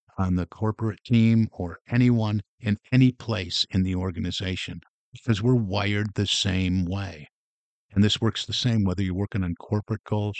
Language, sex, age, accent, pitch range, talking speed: English, male, 50-69, American, 90-110 Hz, 165 wpm